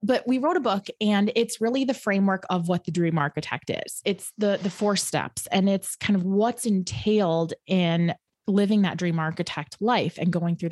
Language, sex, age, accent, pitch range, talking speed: English, female, 20-39, American, 180-235 Hz, 200 wpm